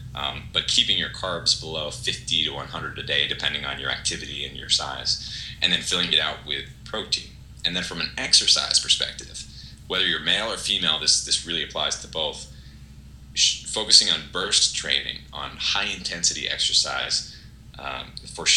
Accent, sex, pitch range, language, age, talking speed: American, male, 70-90 Hz, English, 30-49, 165 wpm